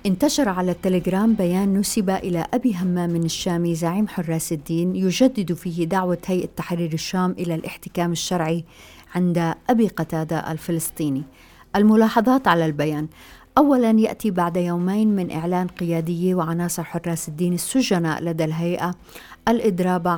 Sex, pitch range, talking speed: female, 165-195 Hz, 130 wpm